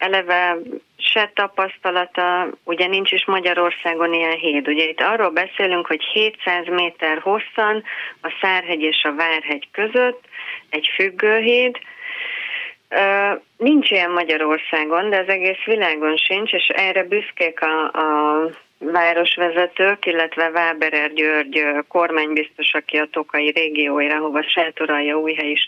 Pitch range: 155-200 Hz